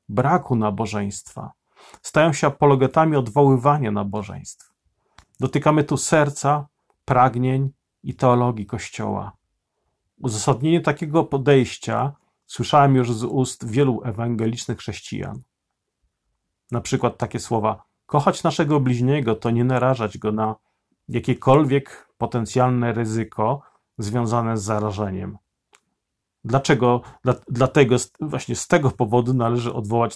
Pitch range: 110-140 Hz